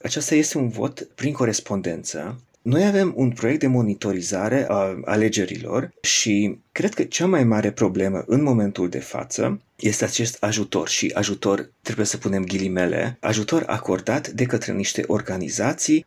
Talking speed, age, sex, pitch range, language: 150 wpm, 30-49, male, 105-145 Hz, Romanian